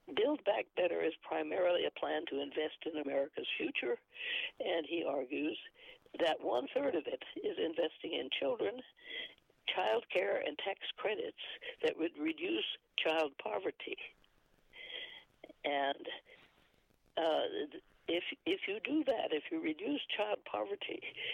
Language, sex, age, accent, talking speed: English, female, 60-79, American, 125 wpm